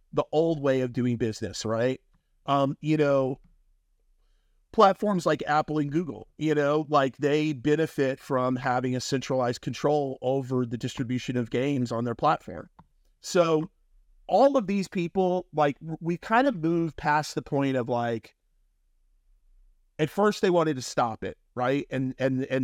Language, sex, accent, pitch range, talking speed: English, male, American, 125-160 Hz, 155 wpm